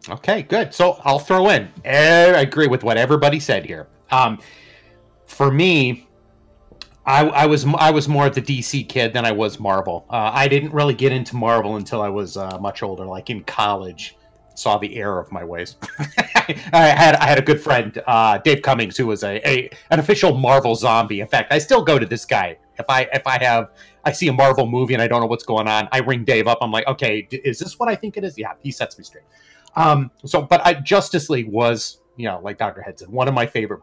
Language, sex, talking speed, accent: English, male, 230 wpm, American